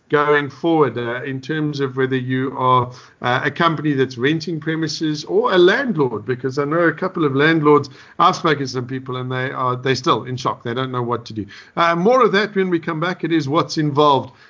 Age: 50-69